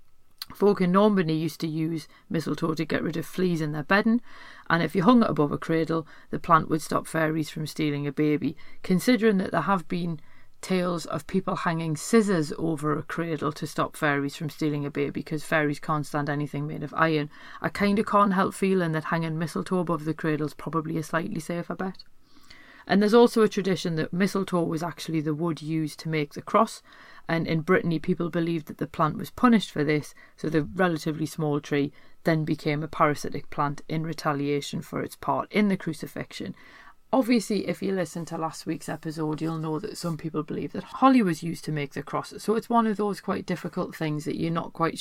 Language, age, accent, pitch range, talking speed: English, 40-59, British, 155-185 Hz, 210 wpm